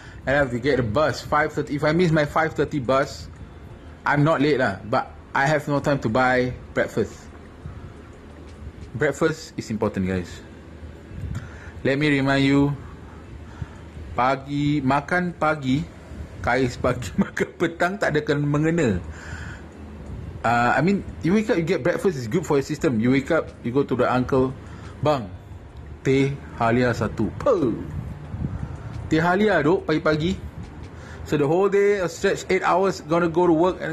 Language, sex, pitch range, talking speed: Malay, male, 100-150 Hz, 155 wpm